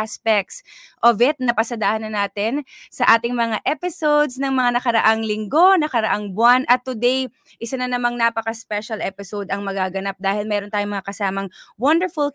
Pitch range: 210-265 Hz